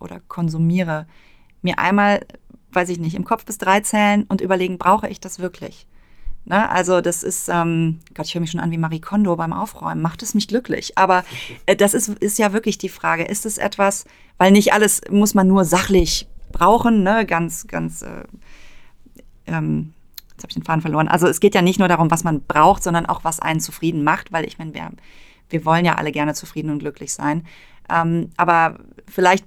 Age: 30-49